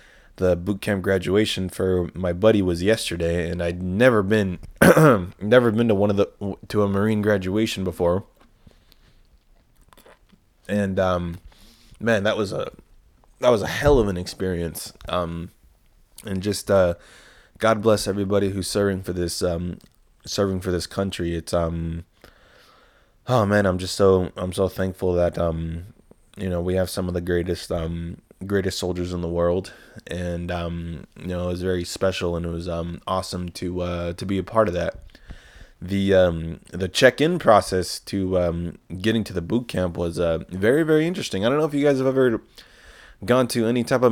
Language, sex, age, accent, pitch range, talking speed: English, male, 20-39, American, 85-105 Hz, 175 wpm